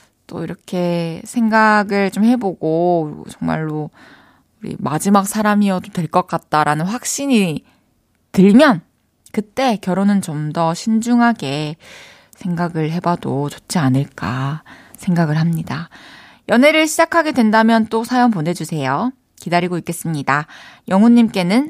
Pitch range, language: 165-240 Hz, Korean